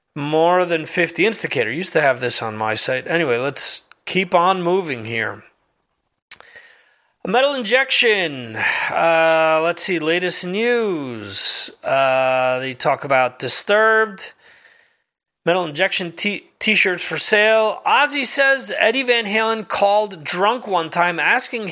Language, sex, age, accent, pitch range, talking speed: English, male, 30-49, American, 160-225 Hz, 125 wpm